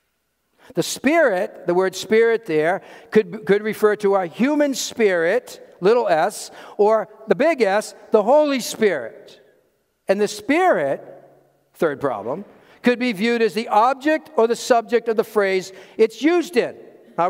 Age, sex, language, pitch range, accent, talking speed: 60-79, male, English, 180-255 Hz, American, 150 wpm